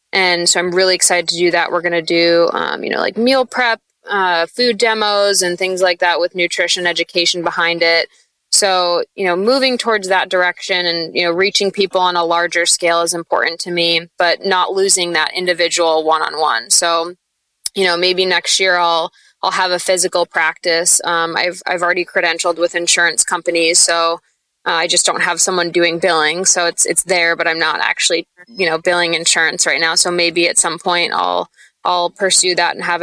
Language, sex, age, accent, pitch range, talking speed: English, female, 20-39, American, 170-190 Hz, 200 wpm